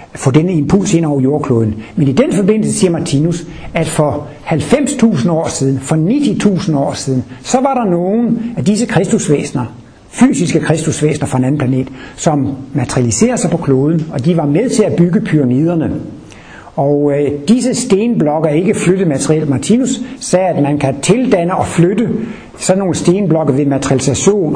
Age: 60-79